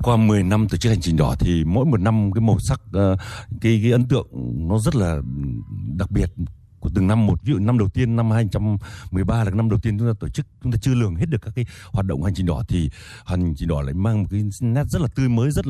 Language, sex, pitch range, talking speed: Vietnamese, male, 95-115 Hz, 270 wpm